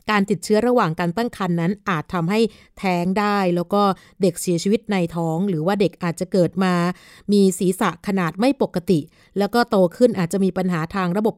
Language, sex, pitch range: Thai, female, 170-210 Hz